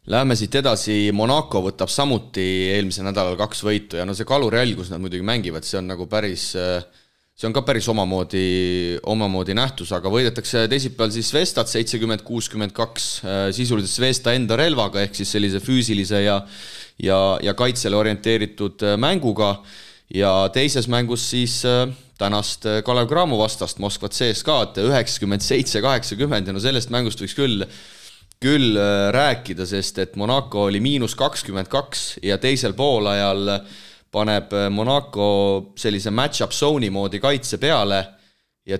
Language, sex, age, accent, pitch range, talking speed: English, male, 30-49, Finnish, 95-120 Hz, 135 wpm